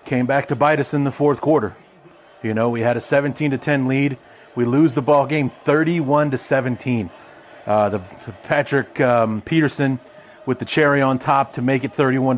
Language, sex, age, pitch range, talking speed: English, male, 30-49, 115-140 Hz, 200 wpm